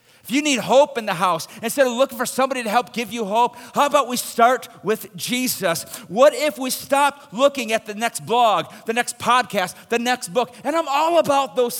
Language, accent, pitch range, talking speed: English, American, 195-255 Hz, 220 wpm